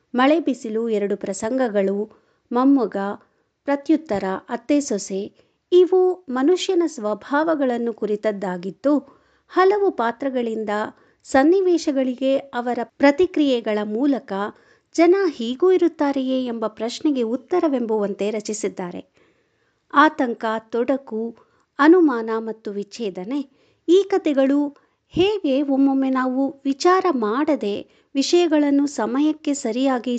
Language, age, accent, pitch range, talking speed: Kannada, 50-69, native, 220-295 Hz, 80 wpm